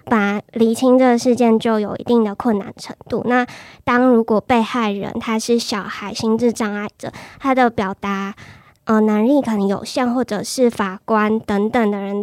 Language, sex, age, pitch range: Chinese, male, 10-29, 205-240 Hz